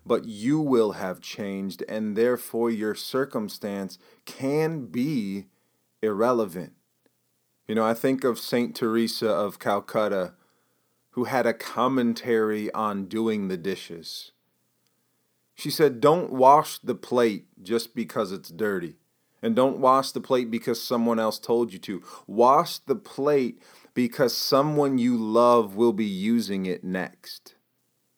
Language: English